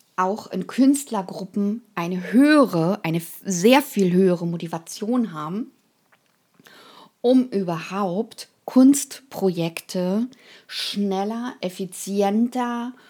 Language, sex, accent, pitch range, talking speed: German, female, German, 190-240 Hz, 75 wpm